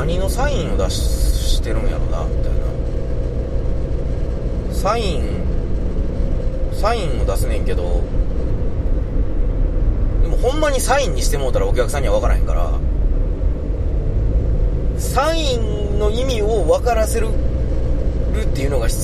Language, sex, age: Japanese, male, 30-49